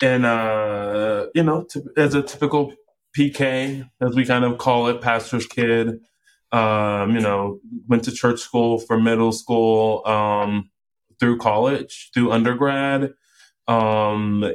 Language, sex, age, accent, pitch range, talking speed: English, male, 20-39, American, 110-130 Hz, 135 wpm